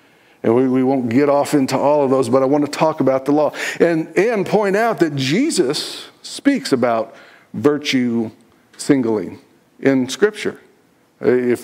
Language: English